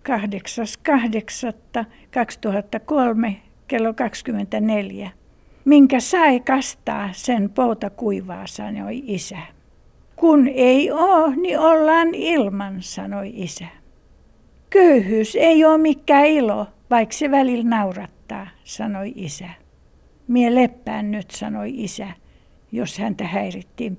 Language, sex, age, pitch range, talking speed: Finnish, female, 60-79, 205-255 Hz, 95 wpm